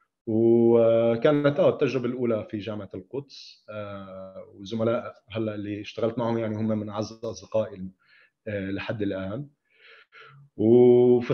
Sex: male